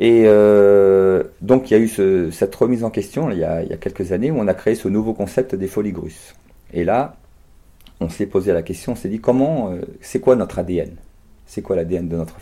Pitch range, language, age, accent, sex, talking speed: 85-100 Hz, French, 40-59, French, male, 240 wpm